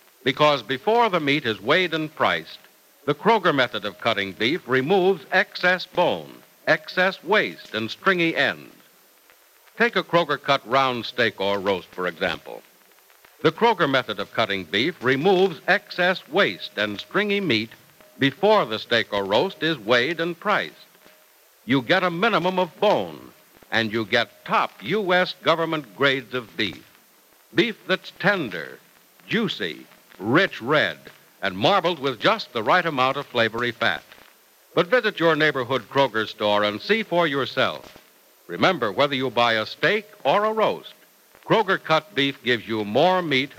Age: 60-79